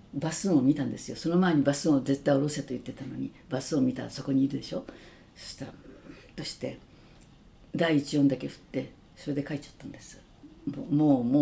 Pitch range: 140-180 Hz